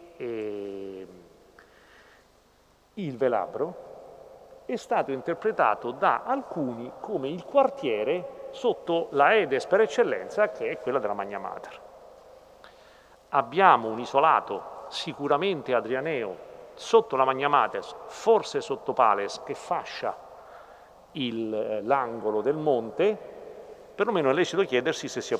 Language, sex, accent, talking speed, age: Italian, male, native, 110 wpm, 40-59